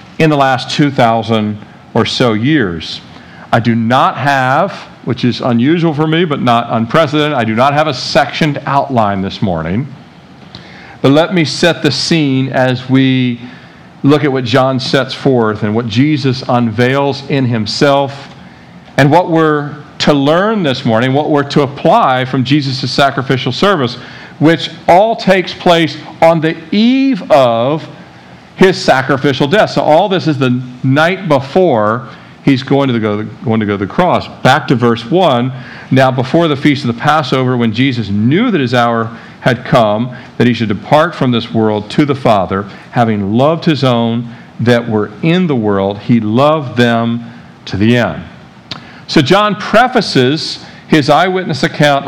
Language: English